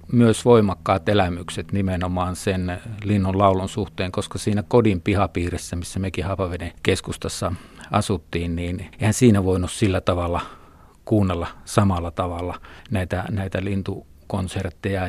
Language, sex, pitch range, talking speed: Finnish, male, 90-105 Hz, 115 wpm